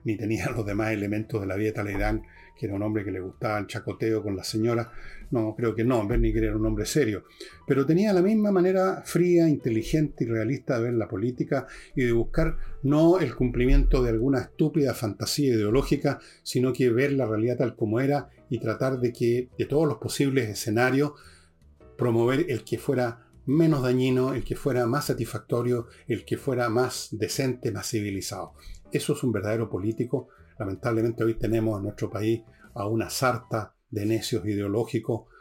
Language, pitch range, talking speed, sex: Spanish, 110-135 Hz, 180 wpm, male